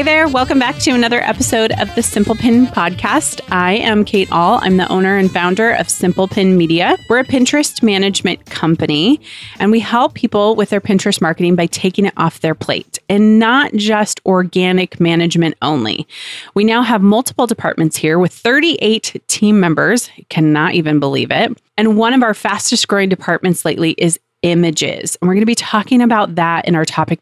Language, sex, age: English, female, 30-49